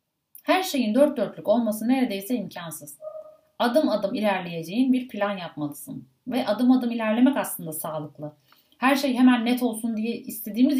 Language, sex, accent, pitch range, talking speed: Turkish, female, native, 180-255 Hz, 145 wpm